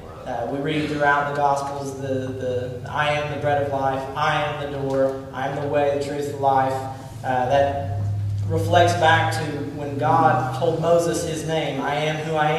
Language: English